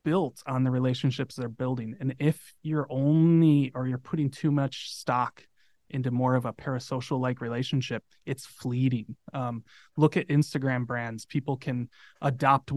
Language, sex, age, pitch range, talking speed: English, male, 20-39, 120-145 Hz, 150 wpm